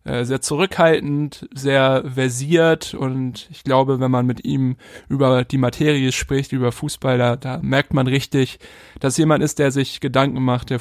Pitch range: 135-155 Hz